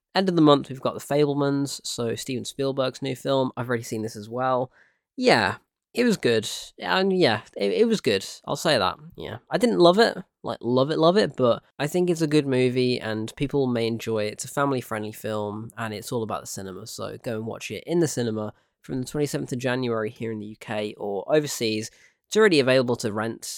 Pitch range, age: 110-140 Hz, 10-29